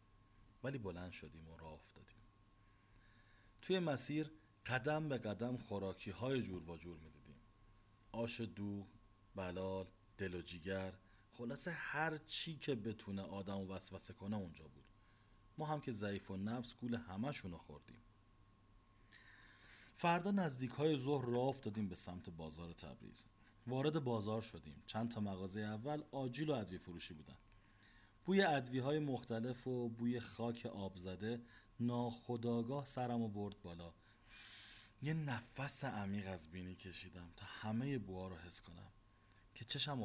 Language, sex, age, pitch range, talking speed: Persian, male, 40-59, 95-120 Hz, 135 wpm